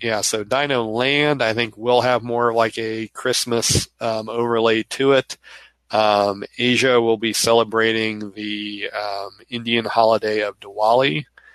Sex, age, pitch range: male, 40-59, 105-130 Hz